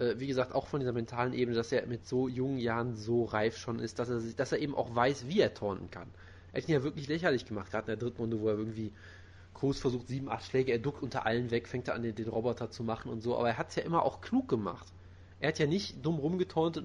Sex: male